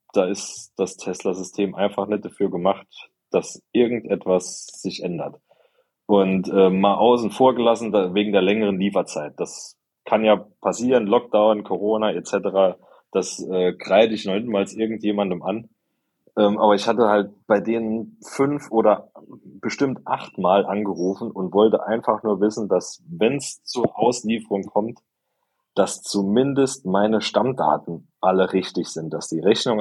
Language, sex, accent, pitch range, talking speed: German, male, German, 95-115 Hz, 140 wpm